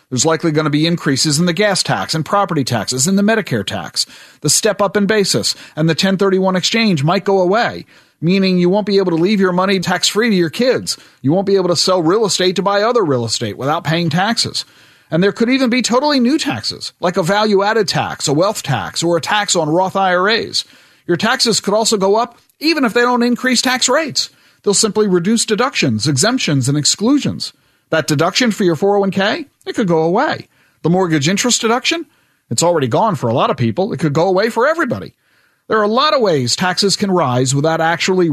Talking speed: 215 wpm